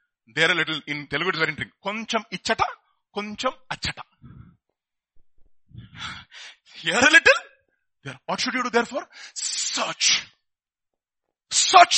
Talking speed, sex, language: 90 wpm, male, English